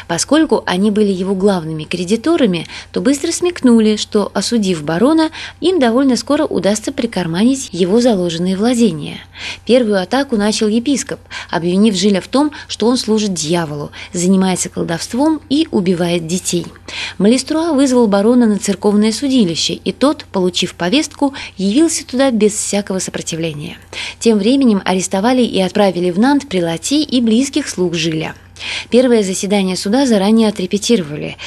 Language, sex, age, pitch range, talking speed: Russian, female, 20-39, 185-245 Hz, 135 wpm